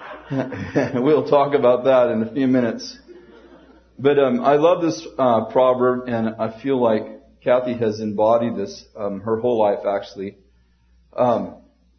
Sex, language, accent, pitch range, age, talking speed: male, English, American, 100-120 Hz, 40-59, 145 wpm